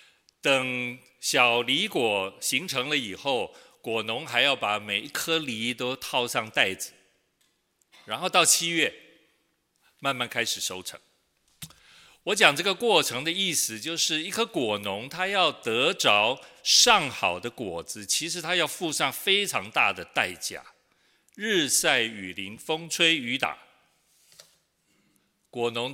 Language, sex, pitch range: Chinese, male, 115-170 Hz